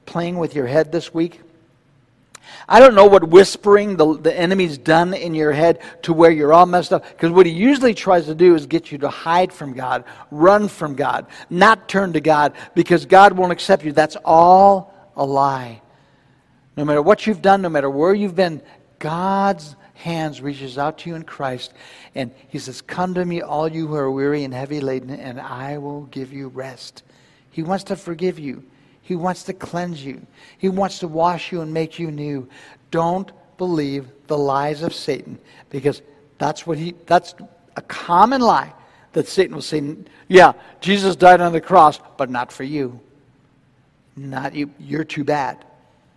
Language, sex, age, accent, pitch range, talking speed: English, male, 60-79, American, 145-175 Hz, 185 wpm